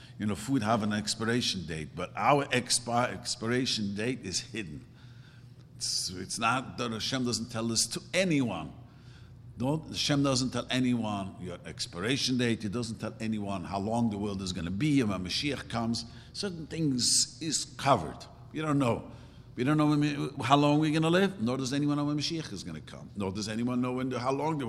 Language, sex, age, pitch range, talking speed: English, male, 50-69, 105-130 Hz, 200 wpm